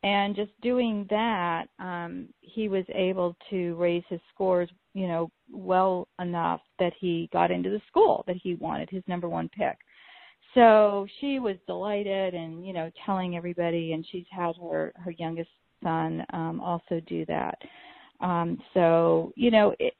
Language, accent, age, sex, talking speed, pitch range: English, American, 40-59, female, 160 wpm, 175-205 Hz